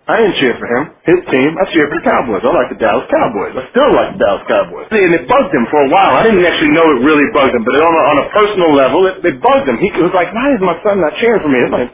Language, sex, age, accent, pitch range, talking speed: English, male, 40-59, American, 165-275 Hz, 315 wpm